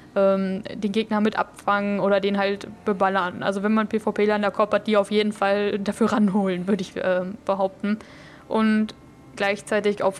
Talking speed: 155 wpm